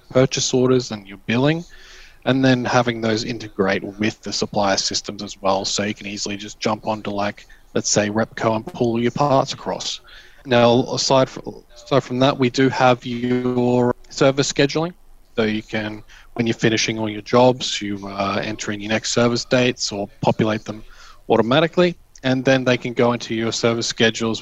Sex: male